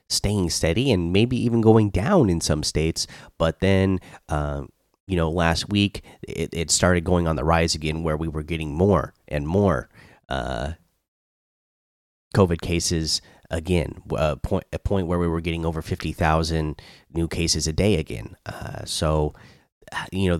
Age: 30-49